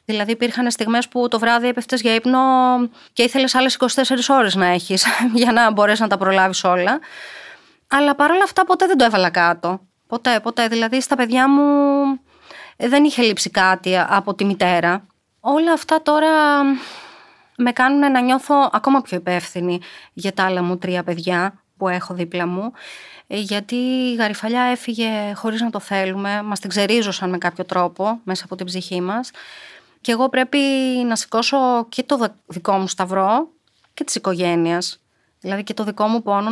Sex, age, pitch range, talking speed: female, 20-39, 190-255 Hz, 170 wpm